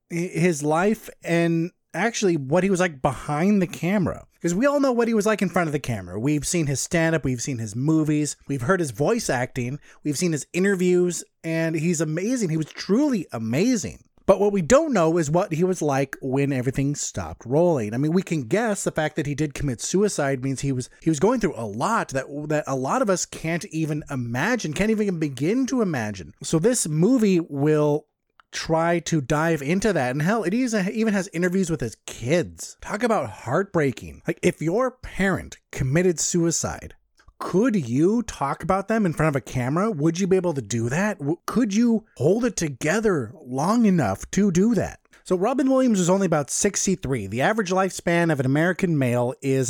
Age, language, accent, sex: 30-49, English, American, male